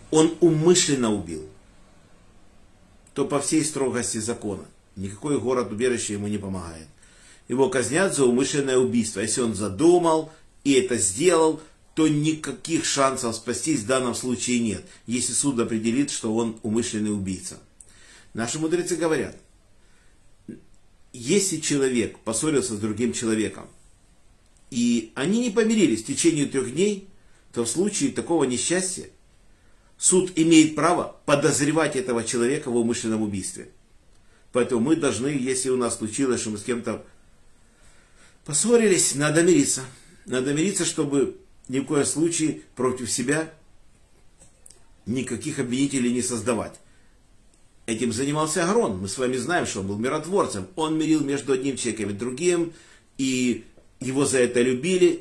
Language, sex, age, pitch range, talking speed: Russian, male, 50-69, 110-155 Hz, 130 wpm